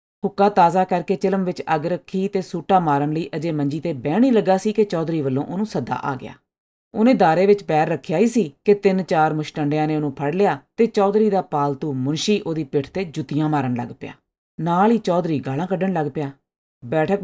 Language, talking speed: Punjabi, 210 wpm